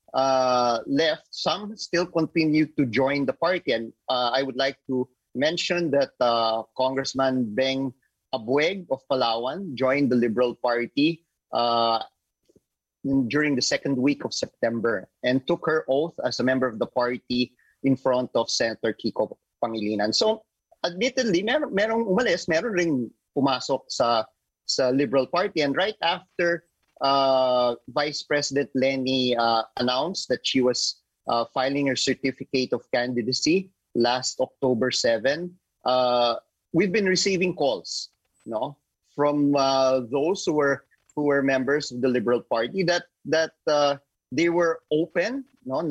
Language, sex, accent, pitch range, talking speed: English, male, Filipino, 125-155 Hz, 140 wpm